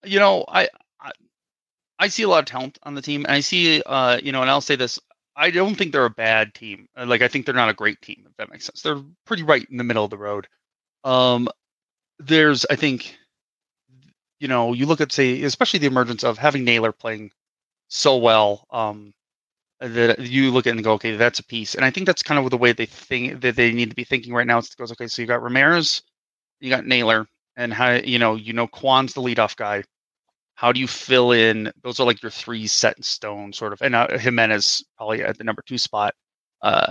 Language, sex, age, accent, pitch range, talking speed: English, male, 30-49, American, 115-140 Hz, 235 wpm